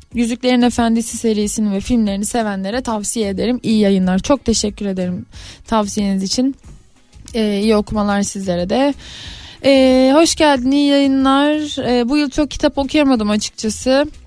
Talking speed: 135 wpm